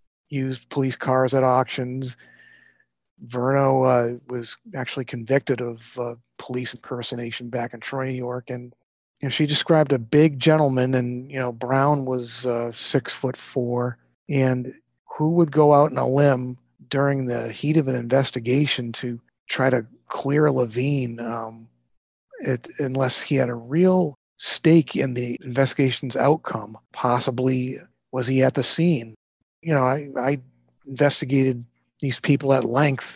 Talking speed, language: 145 wpm, English